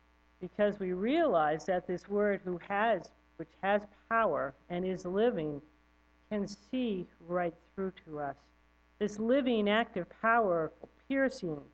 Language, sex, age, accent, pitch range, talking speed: English, female, 50-69, American, 150-220 Hz, 130 wpm